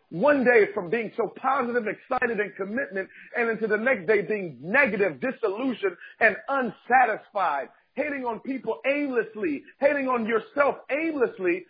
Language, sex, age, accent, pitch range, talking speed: English, male, 50-69, American, 200-265 Hz, 140 wpm